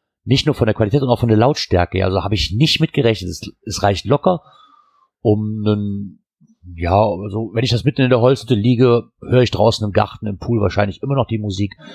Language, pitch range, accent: German, 95-120 Hz, German